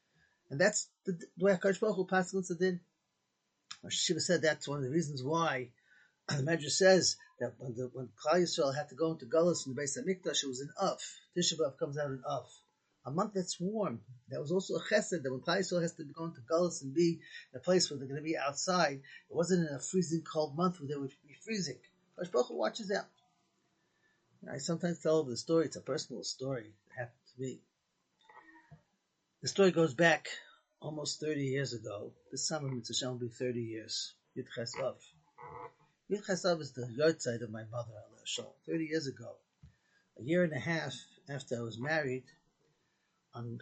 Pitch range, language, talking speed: 130-170 Hz, English, 195 wpm